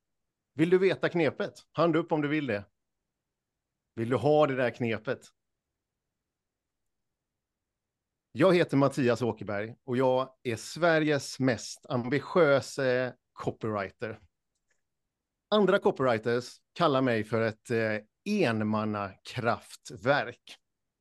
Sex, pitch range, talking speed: male, 115-155 Hz, 95 wpm